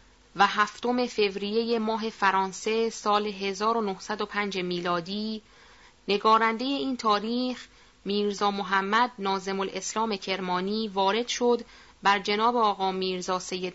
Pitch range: 195-235 Hz